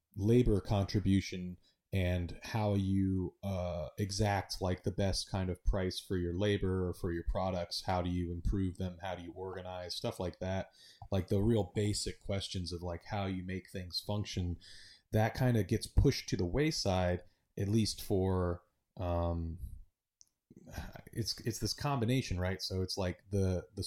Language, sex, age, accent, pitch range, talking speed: English, male, 30-49, American, 90-105 Hz, 165 wpm